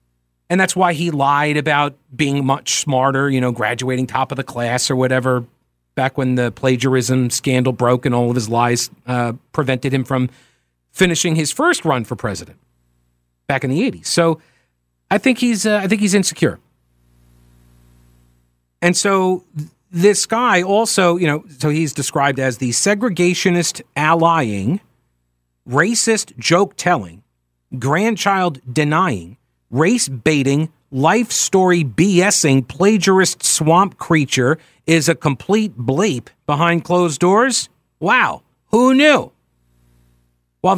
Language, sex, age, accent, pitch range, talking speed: English, male, 40-59, American, 125-190 Hz, 130 wpm